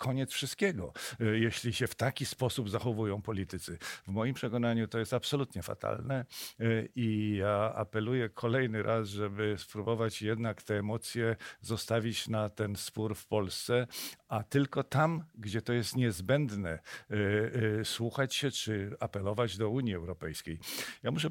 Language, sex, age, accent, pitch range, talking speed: Polish, male, 50-69, native, 105-125 Hz, 135 wpm